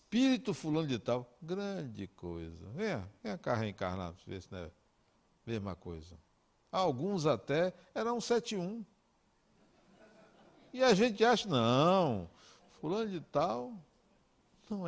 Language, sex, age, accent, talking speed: Portuguese, male, 60-79, Brazilian, 125 wpm